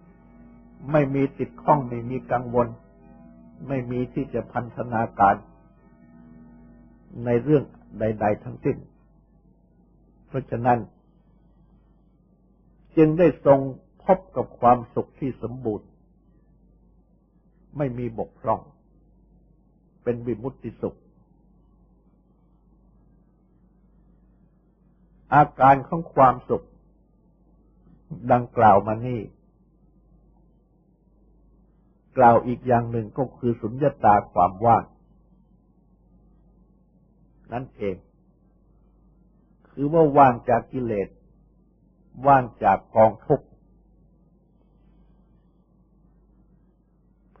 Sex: male